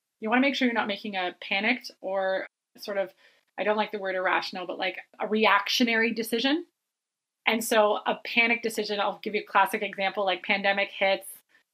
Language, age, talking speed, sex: English, 30-49, 195 wpm, female